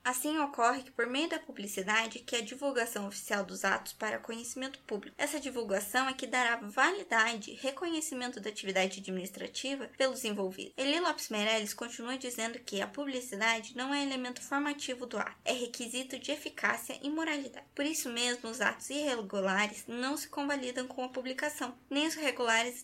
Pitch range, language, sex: 230-285 Hz, Portuguese, female